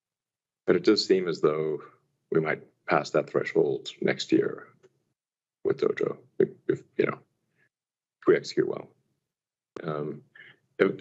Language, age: English, 40-59